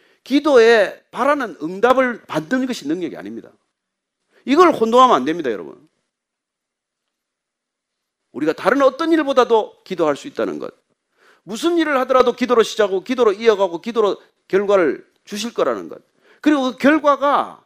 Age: 40-59